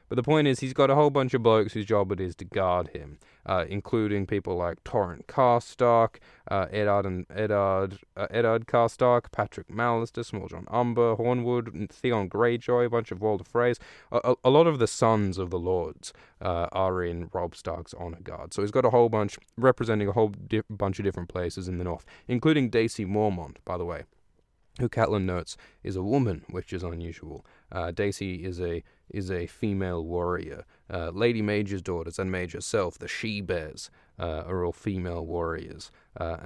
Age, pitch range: 20-39, 90-115 Hz